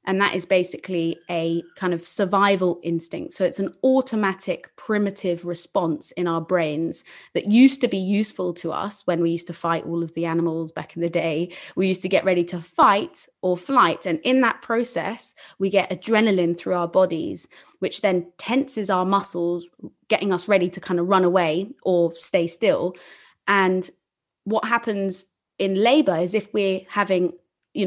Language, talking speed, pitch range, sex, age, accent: English, 180 wpm, 175-200 Hz, female, 20-39, British